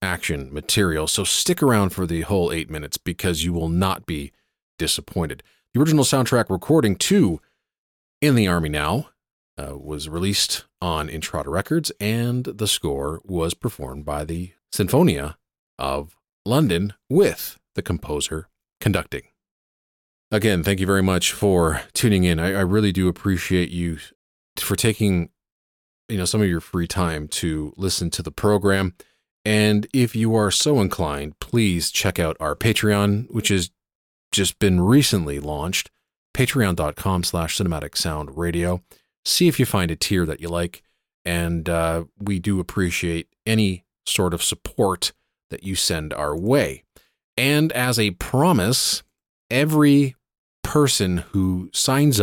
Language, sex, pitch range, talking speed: English, male, 85-110 Hz, 145 wpm